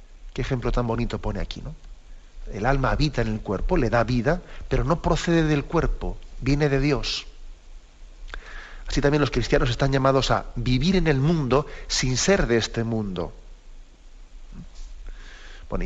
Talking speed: 155 wpm